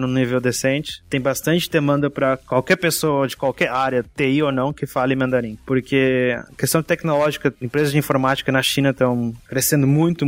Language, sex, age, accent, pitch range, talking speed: Portuguese, male, 20-39, Brazilian, 130-150 Hz, 175 wpm